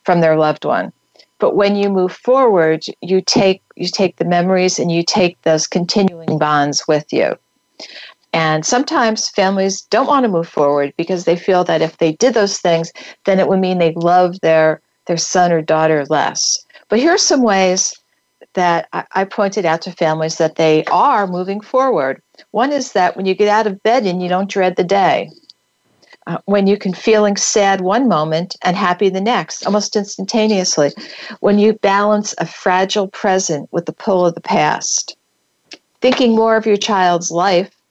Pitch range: 170-210 Hz